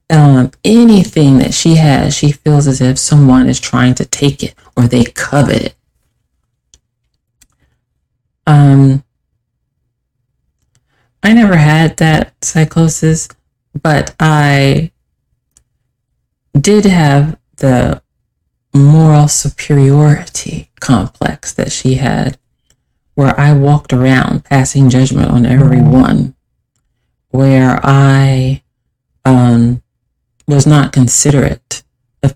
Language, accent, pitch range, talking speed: English, American, 125-155 Hz, 95 wpm